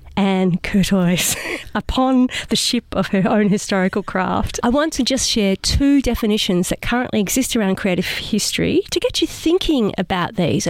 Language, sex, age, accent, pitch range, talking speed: English, female, 40-59, Australian, 185-245 Hz, 165 wpm